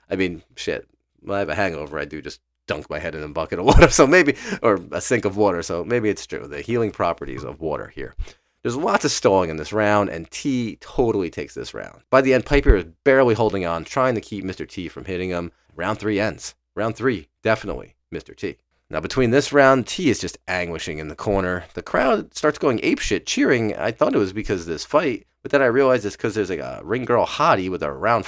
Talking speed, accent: 240 wpm, American